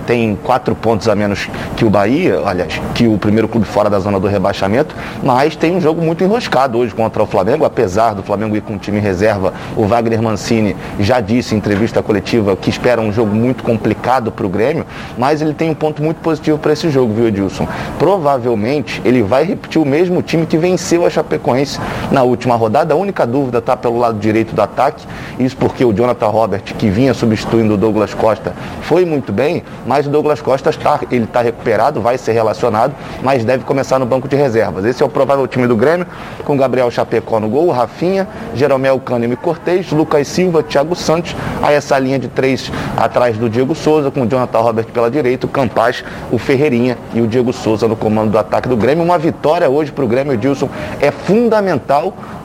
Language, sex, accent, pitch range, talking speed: Portuguese, male, Brazilian, 110-150 Hz, 205 wpm